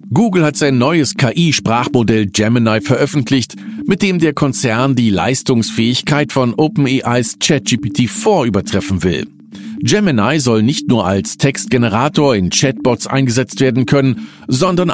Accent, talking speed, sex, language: German, 120 wpm, male, German